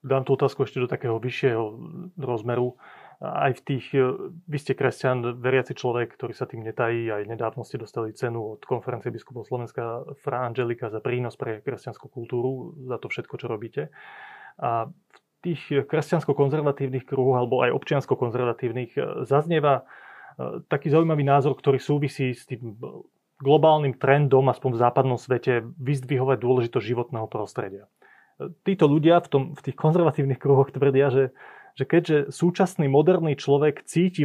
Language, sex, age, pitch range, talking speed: Slovak, male, 30-49, 125-145 Hz, 145 wpm